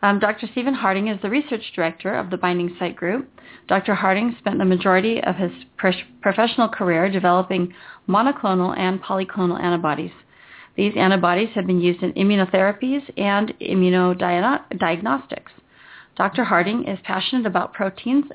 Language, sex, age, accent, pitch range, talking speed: English, female, 40-59, American, 185-220 Hz, 135 wpm